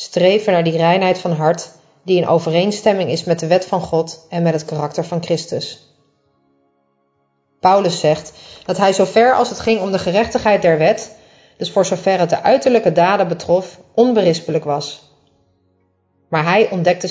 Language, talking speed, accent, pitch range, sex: Dutch, 165 wpm, Dutch, 160-200 Hz, female